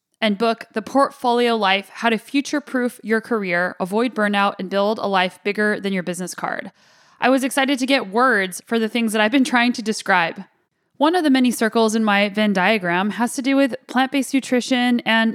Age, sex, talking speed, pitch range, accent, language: 10-29, female, 205 wpm, 205-255 Hz, American, English